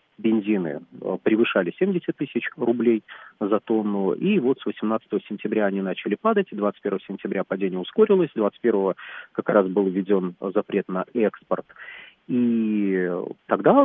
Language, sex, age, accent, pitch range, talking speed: Russian, male, 40-59, native, 100-140 Hz, 125 wpm